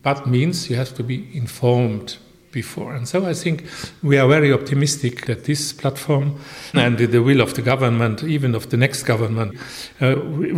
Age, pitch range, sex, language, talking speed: 50-69, 120-150 Hz, male, English, 175 wpm